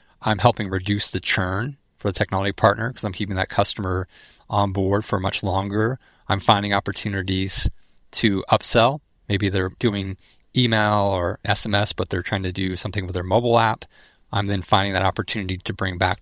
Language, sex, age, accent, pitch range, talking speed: English, male, 40-59, American, 95-110 Hz, 180 wpm